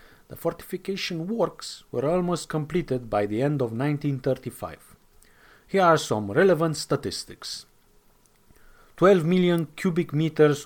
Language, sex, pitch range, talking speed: English, male, 120-160 Hz, 115 wpm